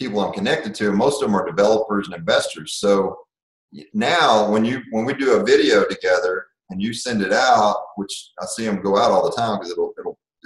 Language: English